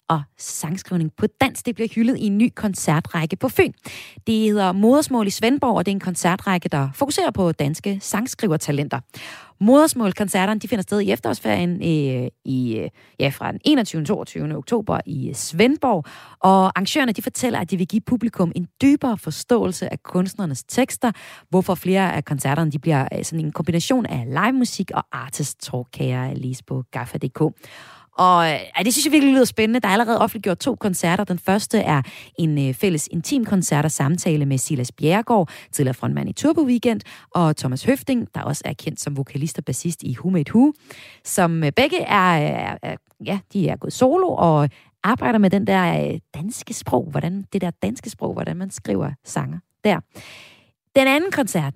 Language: Danish